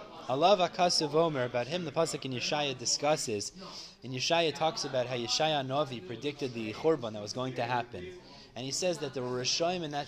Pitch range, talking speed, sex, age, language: 130-175 Hz, 200 wpm, male, 30-49, English